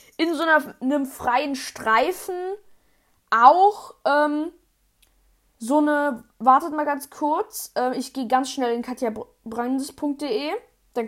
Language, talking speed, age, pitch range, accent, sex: German, 120 wpm, 10-29, 240-295 Hz, German, female